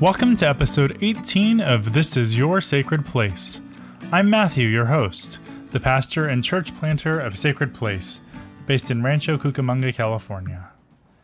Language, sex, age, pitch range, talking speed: English, male, 20-39, 120-165 Hz, 145 wpm